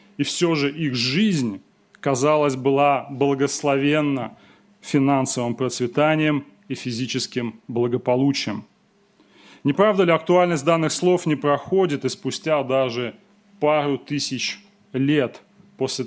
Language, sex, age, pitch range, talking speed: Russian, male, 30-49, 130-175 Hz, 100 wpm